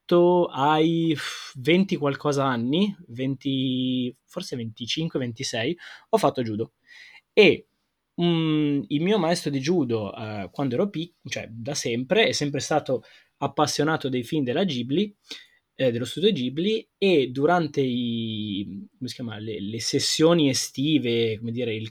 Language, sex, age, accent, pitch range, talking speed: Italian, male, 20-39, native, 125-175 Hz, 120 wpm